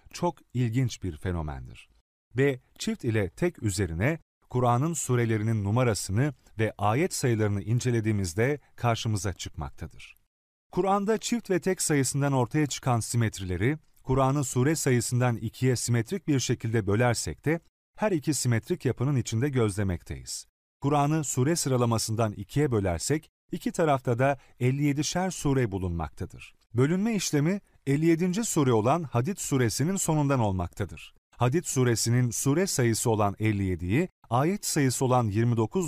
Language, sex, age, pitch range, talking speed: Turkish, male, 40-59, 105-145 Hz, 120 wpm